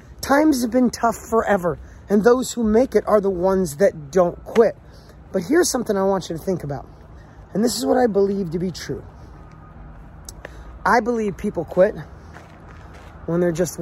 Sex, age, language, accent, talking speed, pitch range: male, 30-49, English, American, 180 wpm, 145-210 Hz